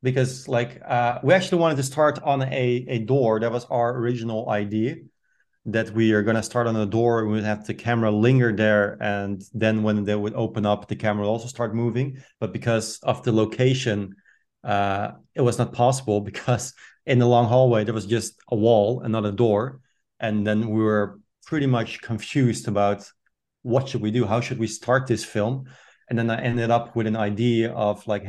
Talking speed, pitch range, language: 210 wpm, 105-120 Hz, English